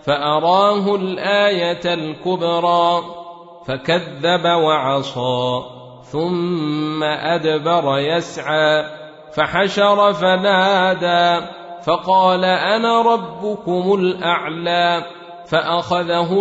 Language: Arabic